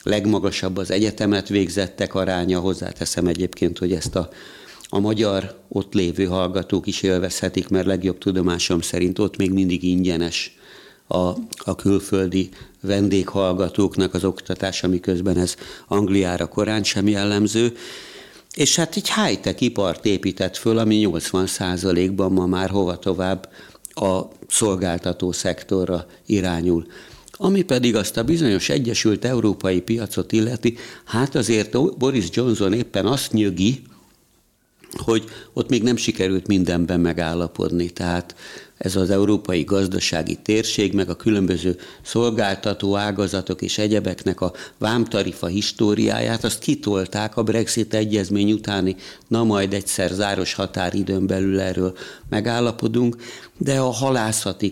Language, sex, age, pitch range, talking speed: Hungarian, male, 50-69, 95-110 Hz, 120 wpm